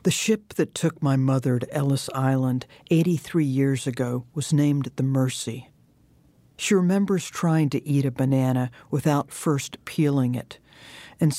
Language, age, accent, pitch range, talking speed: English, 60-79, American, 130-150 Hz, 150 wpm